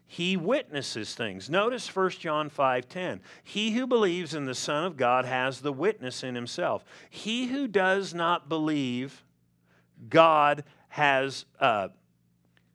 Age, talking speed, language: 50-69, 130 wpm, English